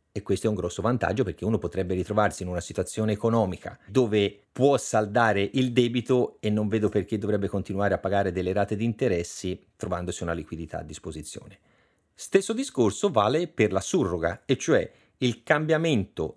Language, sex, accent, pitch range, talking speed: Italian, male, native, 95-125 Hz, 170 wpm